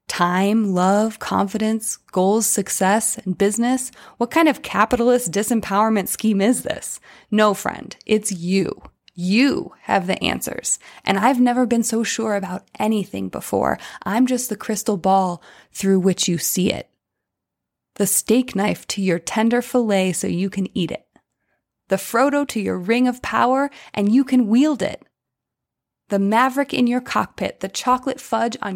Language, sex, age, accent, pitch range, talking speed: English, female, 20-39, American, 190-225 Hz, 155 wpm